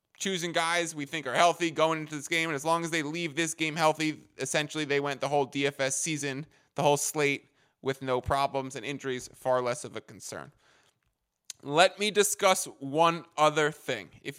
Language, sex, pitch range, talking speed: English, male, 135-170 Hz, 190 wpm